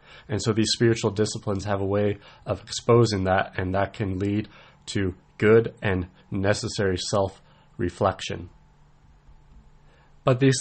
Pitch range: 105-125 Hz